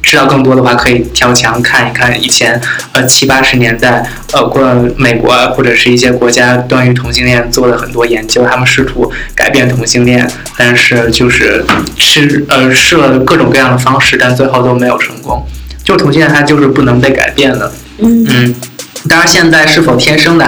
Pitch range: 120-135 Hz